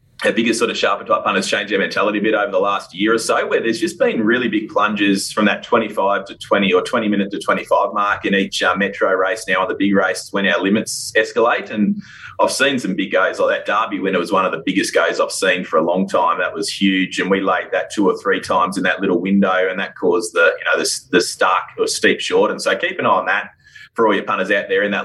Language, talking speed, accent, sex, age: English, 275 wpm, Australian, male, 20-39